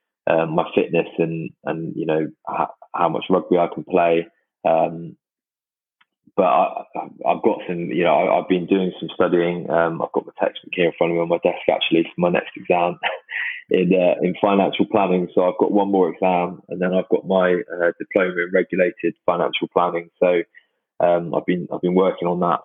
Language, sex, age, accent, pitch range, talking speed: English, male, 20-39, British, 85-95 Hz, 205 wpm